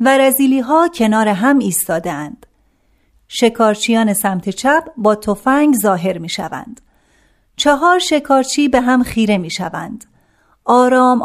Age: 40-59